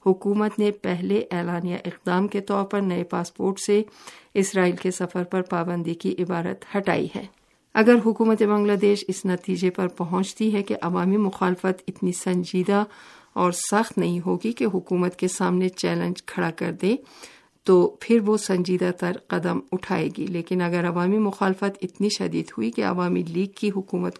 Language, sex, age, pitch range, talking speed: Urdu, female, 50-69, 180-200 Hz, 165 wpm